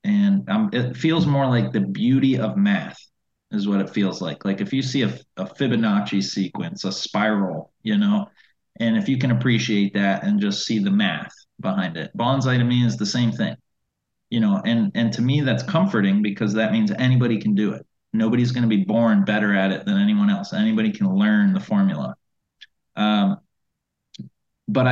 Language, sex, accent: English, male, American